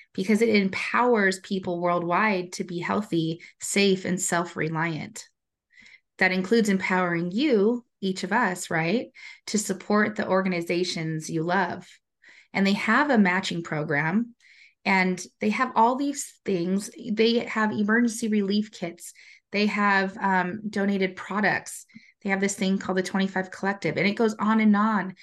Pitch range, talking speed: 175-210 Hz, 145 wpm